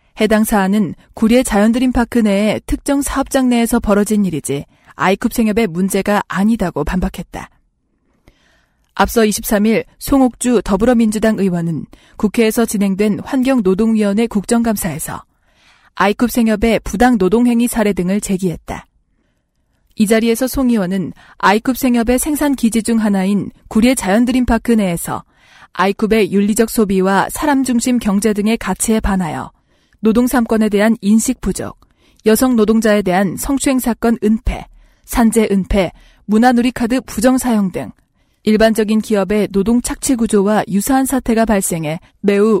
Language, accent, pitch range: Korean, native, 195-240 Hz